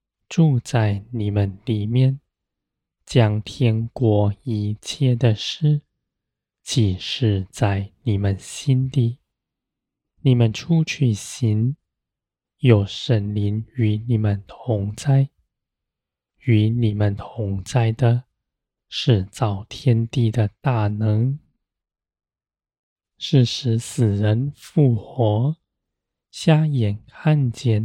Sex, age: male, 20-39